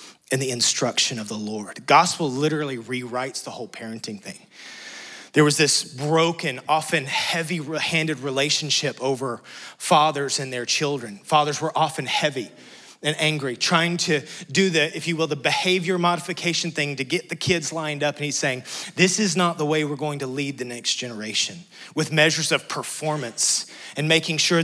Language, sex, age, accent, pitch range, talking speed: English, male, 30-49, American, 140-175 Hz, 175 wpm